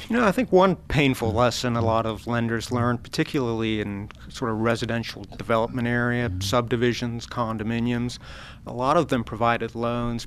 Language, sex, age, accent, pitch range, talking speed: English, male, 50-69, American, 110-130 Hz, 160 wpm